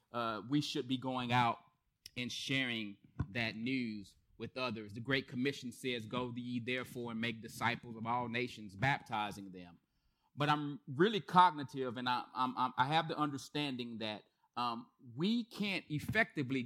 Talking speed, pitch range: 150 wpm, 115-145 Hz